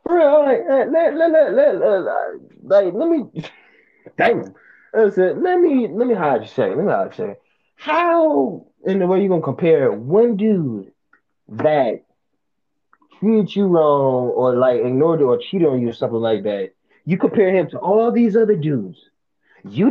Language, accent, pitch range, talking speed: English, American, 140-220 Hz, 185 wpm